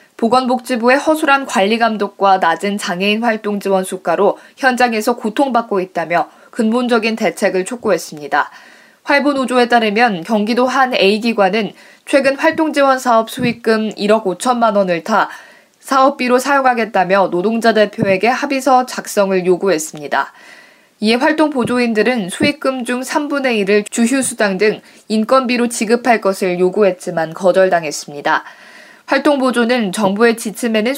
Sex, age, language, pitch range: female, 20-39, Korean, 195-255 Hz